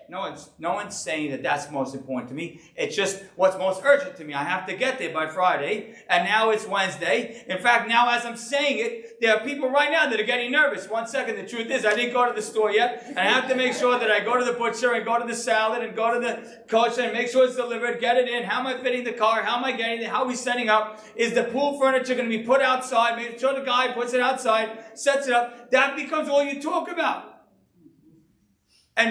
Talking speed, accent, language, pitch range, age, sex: 265 wpm, American, English, 190-265 Hz, 40-59, male